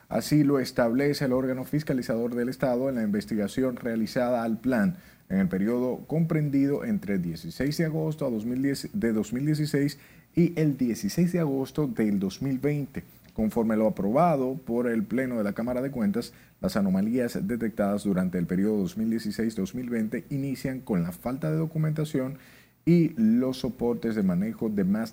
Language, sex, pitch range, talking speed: Spanish, male, 105-160 Hz, 150 wpm